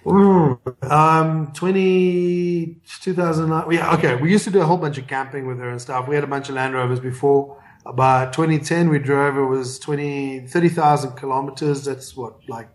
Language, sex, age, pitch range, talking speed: English, male, 30-49, 130-150 Hz, 185 wpm